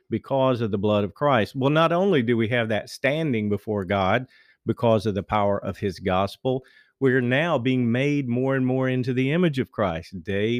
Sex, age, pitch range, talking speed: male, 50-69, 105-130 Hz, 210 wpm